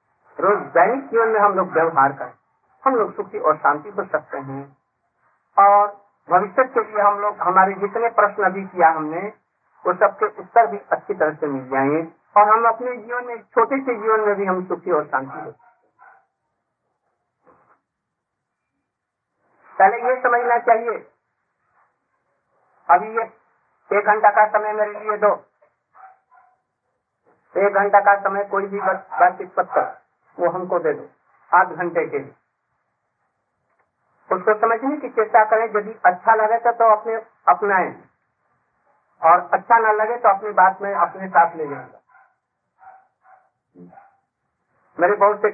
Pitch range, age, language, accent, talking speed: 180-230 Hz, 50-69, Hindi, native, 140 wpm